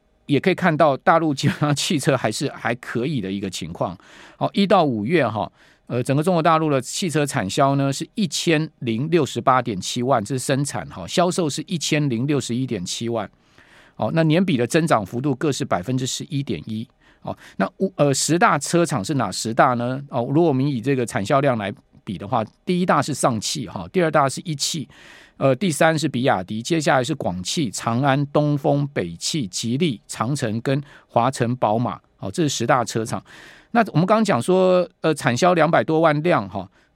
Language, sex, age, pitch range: Chinese, male, 50-69, 125-165 Hz